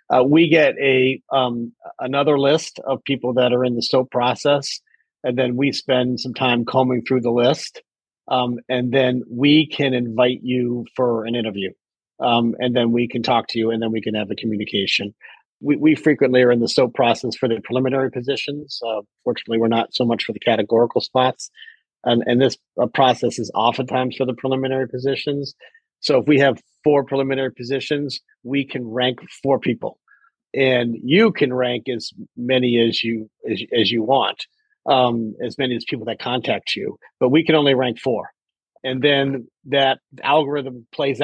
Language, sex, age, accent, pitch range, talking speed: English, male, 40-59, American, 120-140 Hz, 180 wpm